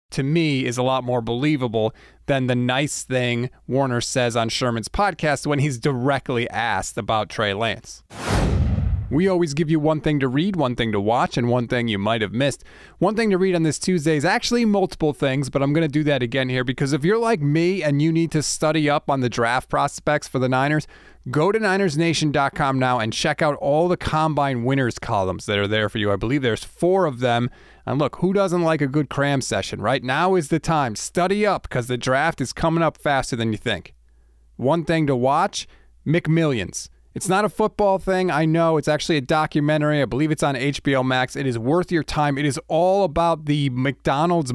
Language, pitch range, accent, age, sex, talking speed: English, 125-170 Hz, American, 30-49, male, 215 wpm